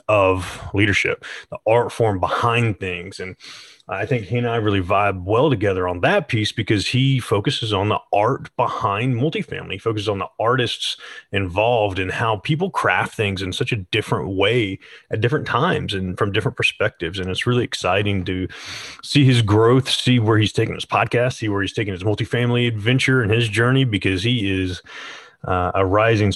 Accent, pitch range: American, 95-115 Hz